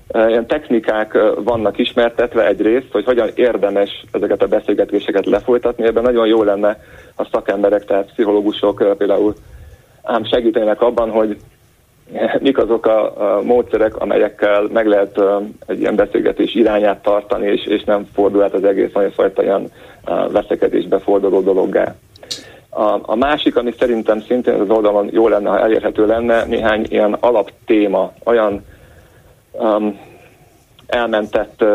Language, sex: Hungarian, male